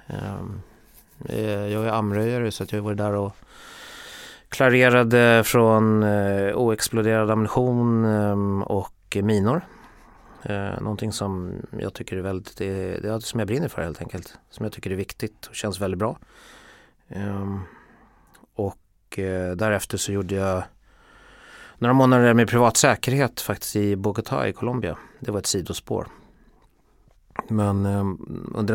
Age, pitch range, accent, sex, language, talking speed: 30-49, 100-120 Hz, native, male, Swedish, 115 wpm